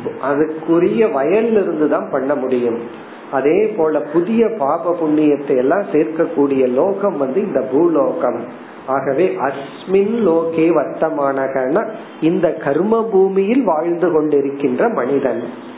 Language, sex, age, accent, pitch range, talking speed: Tamil, male, 50-69, native, 145-200 Hz, 75 wpm